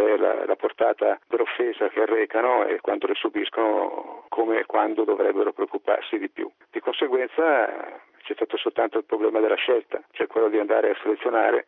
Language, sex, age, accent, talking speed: Italian, male, 50-69, native, 160 wpm